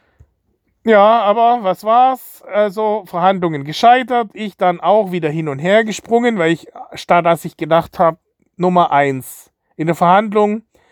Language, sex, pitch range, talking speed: German, male, 165-205 Hz, 150 wpm